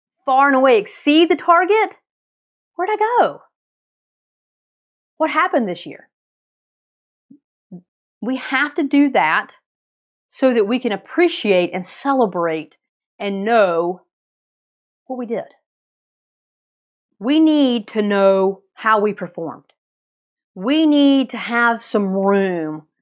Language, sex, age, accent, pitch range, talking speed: English, female, 30-49, American, 190-260 Hz, 110 wpm